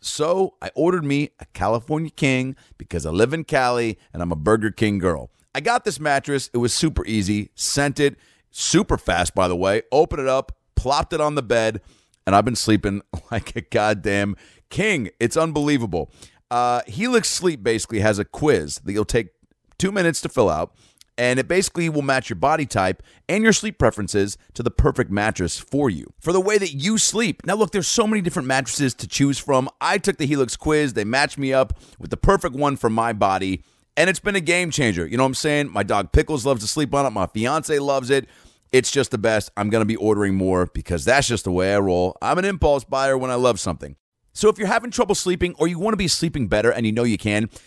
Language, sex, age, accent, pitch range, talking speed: English, male, 30-49, American, 105-155 Hz, 230 wpm